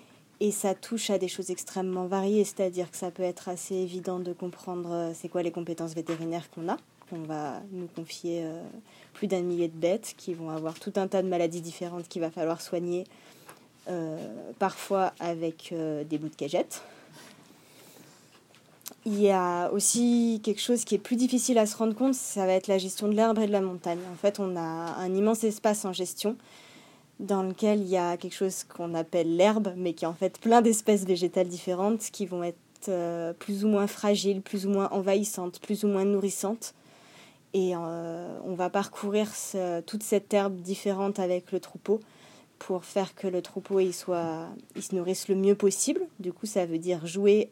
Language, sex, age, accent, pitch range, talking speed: French, female, 20-39, French, 175-200 Hz, 195 wpm